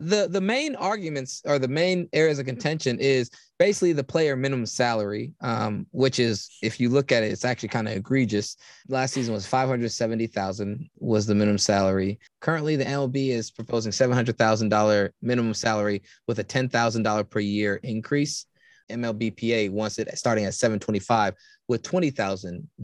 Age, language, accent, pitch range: 20-39, English, American, 115-190 Hz